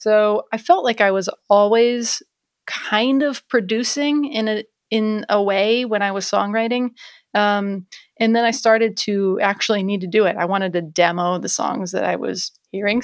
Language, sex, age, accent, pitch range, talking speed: English, female, 30-49, American, 195-225 Hz, 185 wpm